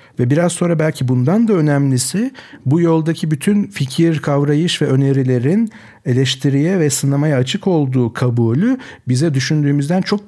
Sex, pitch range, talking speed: male, 125-160 Hz, 135 wpm